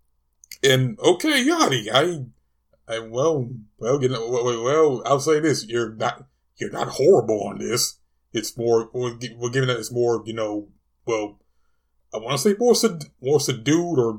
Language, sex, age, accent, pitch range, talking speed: English, male, 20-39, American, 110-150 Hz, 175 wpm